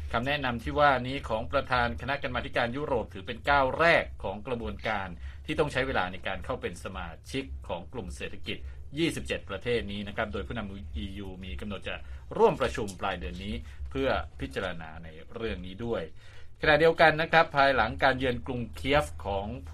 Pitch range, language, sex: 90-125 Hz, Thai, male